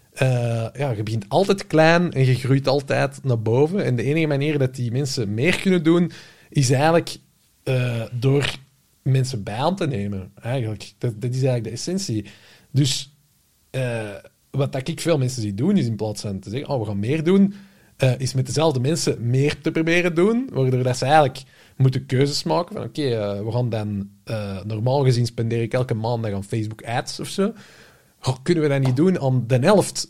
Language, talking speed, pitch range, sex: English, 190 wpm, 120-155 Hz, male